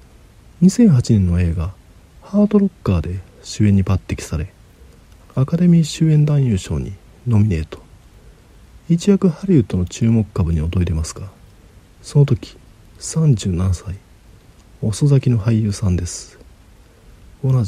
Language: Japanese